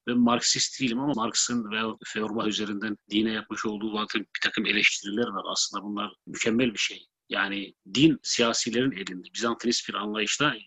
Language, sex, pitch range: Turkish, male, 110-130 Hz